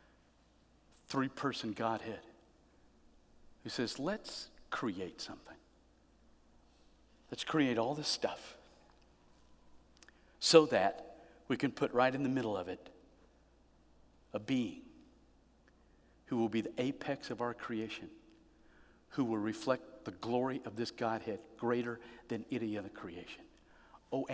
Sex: male